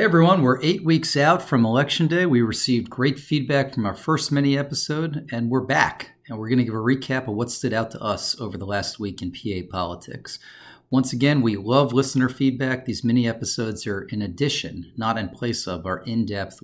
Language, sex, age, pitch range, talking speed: English, male, 40-59, 110-140 Hz, 205 wpm